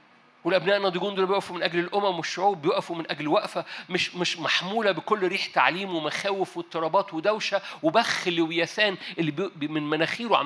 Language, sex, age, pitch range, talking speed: Arabic, male, 50-69, 165-200 Hz, 150 wpm